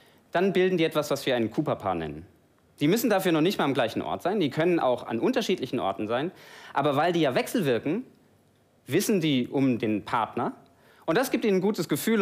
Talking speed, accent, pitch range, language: 210 wpm, German, 125-185 Hz, German